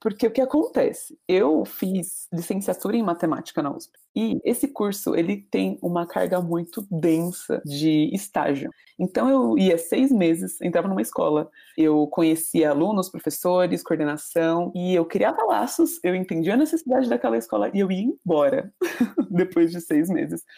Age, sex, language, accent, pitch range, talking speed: 20-39, female, Portuguese, Brazilian, 165-250 Hz, 155 wpm